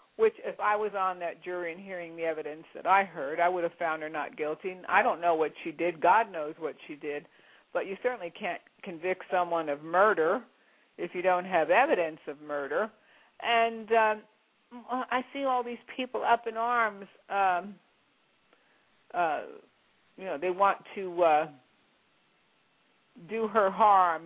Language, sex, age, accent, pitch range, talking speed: English, female, 50-69, American, 175-225 Hz, 170 wpm